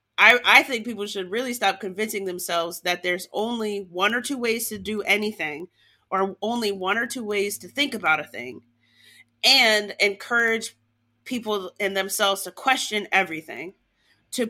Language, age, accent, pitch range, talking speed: English, 30-49, American, 180-220 Hz, 160 wpm